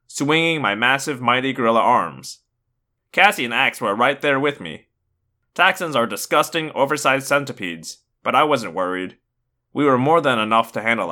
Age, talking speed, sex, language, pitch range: 20-39, 160 wpm, male, English, 120-150 Hz